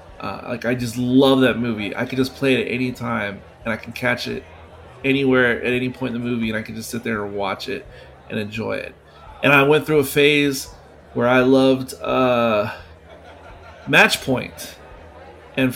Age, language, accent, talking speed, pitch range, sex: 30-49, English, American, 195 wpm, 110-135 Hz, male